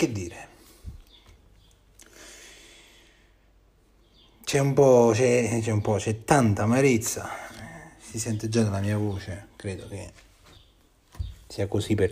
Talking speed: 115 wpm